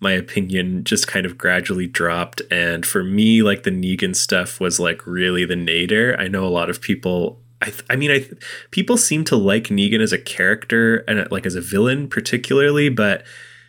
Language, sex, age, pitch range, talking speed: English, male, 20-39, 95-120 Hz, 200 wpm